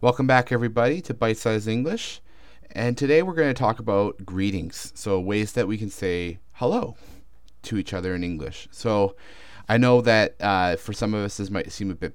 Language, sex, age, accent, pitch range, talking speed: English, male, 30-49, American, 90-115 Hz, 205 wpm